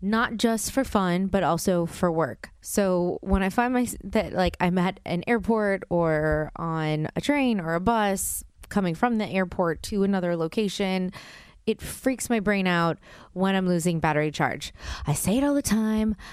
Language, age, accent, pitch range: English, 20-39, American, 165-225 Hz